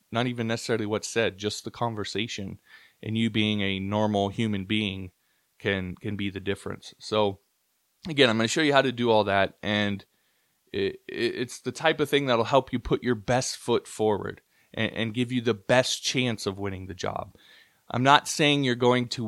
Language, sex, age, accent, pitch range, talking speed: English, male, 20-39, American, 100-120 Hz, 195 wpm